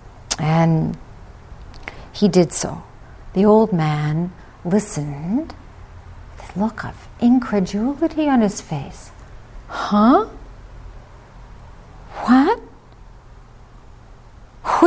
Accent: American